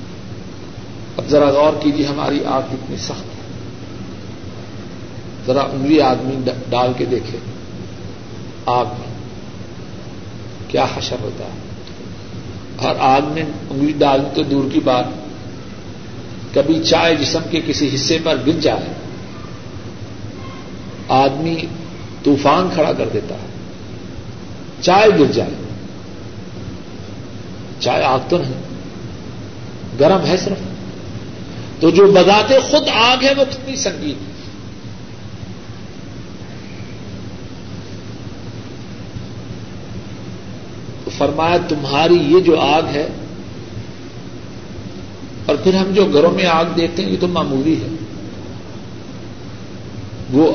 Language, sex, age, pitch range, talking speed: Urdu, male, 50-69, 120-160 Hz, 95 wpm